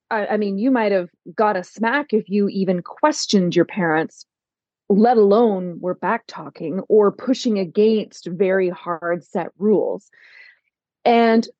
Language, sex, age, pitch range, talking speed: English, female, 30-49, 200-265 Hz, 135 wpm